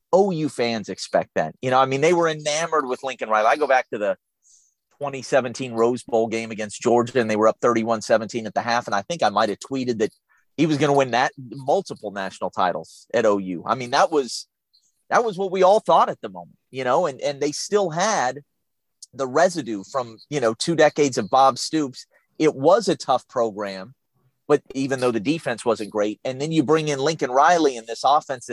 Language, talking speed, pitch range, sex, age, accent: English, 220 wpm, 120-155 Hz, male, 30-49, American